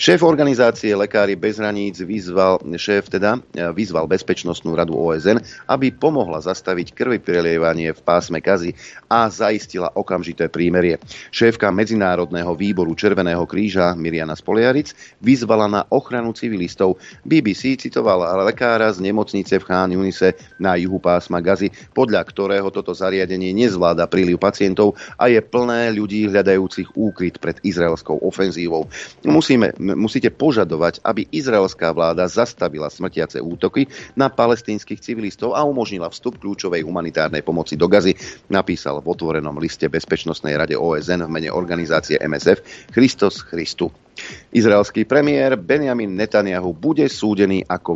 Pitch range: 85-105 Hz